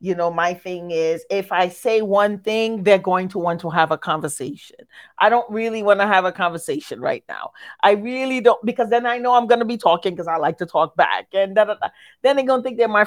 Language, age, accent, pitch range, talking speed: English, 40-59, American, 180-225 Hz, 250 wpm